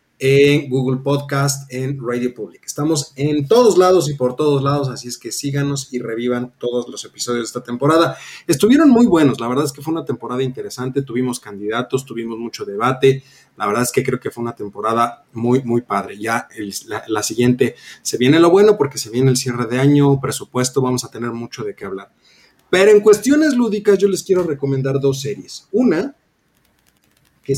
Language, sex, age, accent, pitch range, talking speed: Spanish, male, 30-49, Mexican, 120-150 Hz, 195 wpm